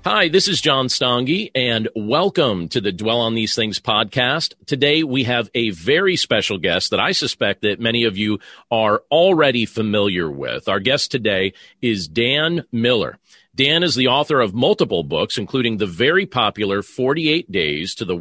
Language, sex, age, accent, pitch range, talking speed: English, male, 40-59, American, 110-155 Hz, 175 wpm